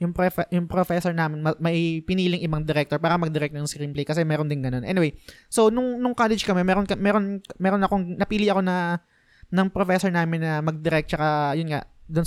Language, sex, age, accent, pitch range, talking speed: Filipino, male, 20-39, native, 150-190 Hz, 190 wpm